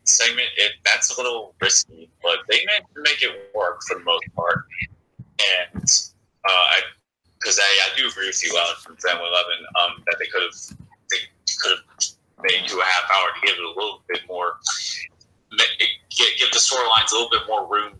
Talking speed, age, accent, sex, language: 195 wpm, 30-49, American, male, English